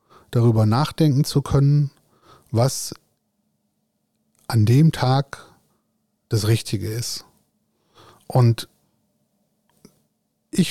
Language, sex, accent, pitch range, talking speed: German, male, German, 120-155 Hz, 75 wpm